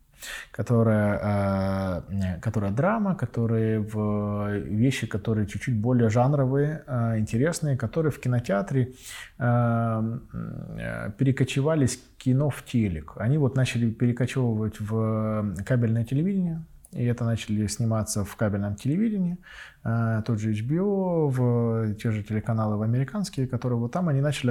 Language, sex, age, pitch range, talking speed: Ukrainian, male, 20-39, 105-125 Hz, 110 wpm